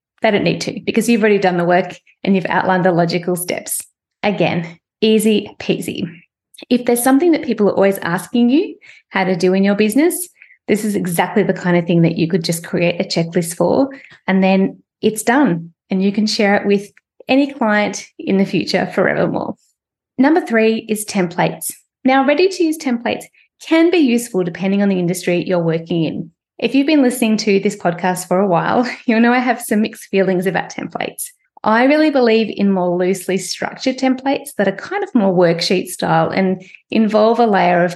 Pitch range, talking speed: 180-245 Hz, 190 wpm